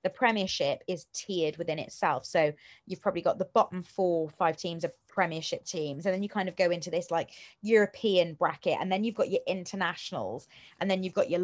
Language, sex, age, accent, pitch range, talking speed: English, female, 20-39, British, 165-205 Hz, 215 wpm